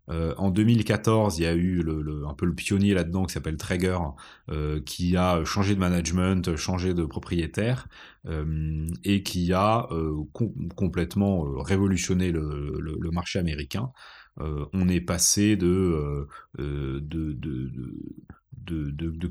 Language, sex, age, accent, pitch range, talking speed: French, male, 30-49, French, 80-100 Hz, 135 wpm